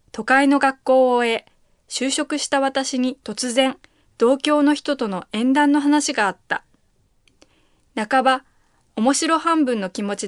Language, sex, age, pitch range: Chinese, female, 20-39, 210-280 Hz